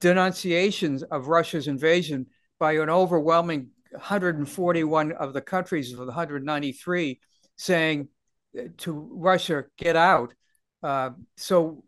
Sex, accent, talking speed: male, American, 105 wpm